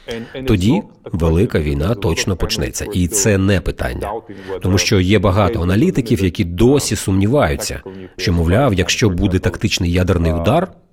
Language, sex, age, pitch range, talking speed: Ukrainian, male, 40-59, 90-115 Hz, 130 wpm